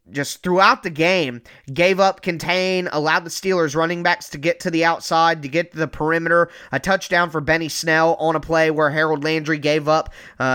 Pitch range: 155-185 Hz